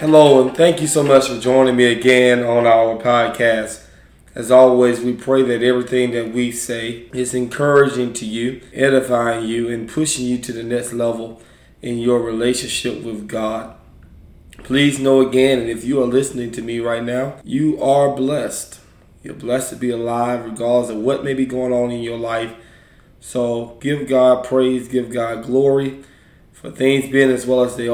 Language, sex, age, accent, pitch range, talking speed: English, male, 20-39, American, 115-135 Hz, 180 wpm